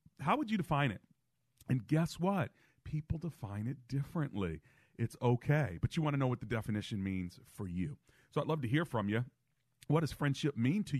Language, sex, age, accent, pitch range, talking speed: English, male, 40-59, American, 100-130 Hz, 200 wpm